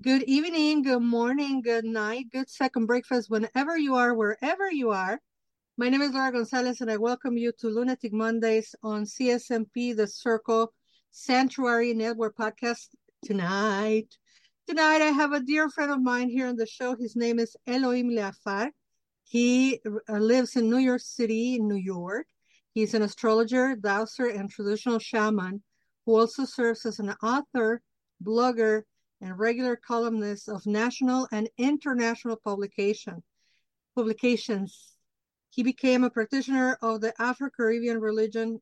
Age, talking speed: 50-69, 140 wpm